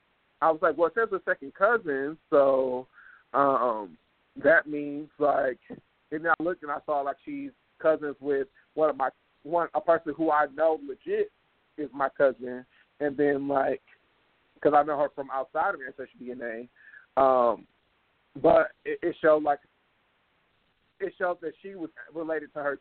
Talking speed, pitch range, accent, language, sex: 170 wpm, 135-165 Hz, American, English, male